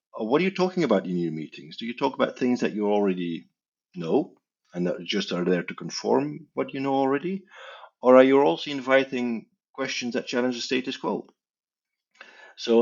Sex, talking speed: male, 185 wpm